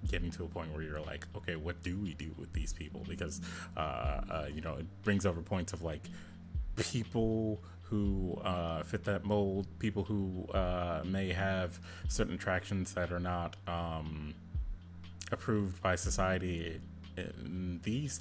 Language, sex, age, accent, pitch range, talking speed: English, male, 30-49, American, 85-95 Hz, 160 wpm